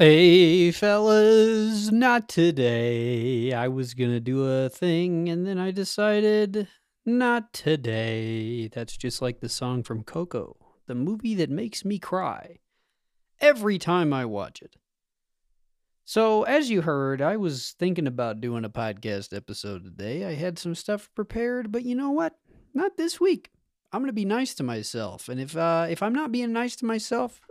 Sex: male